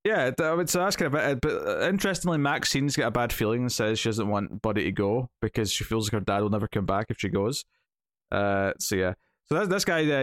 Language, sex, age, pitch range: English, male, 20-39, 100-130 Hz